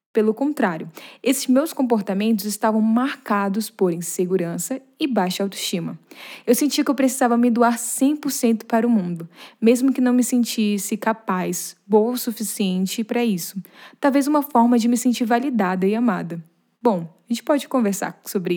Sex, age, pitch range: female, 10-29, 205-275 Hz